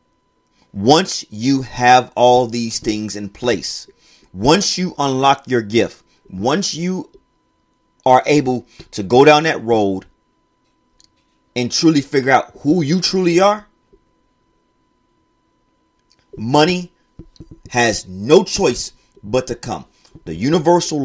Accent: American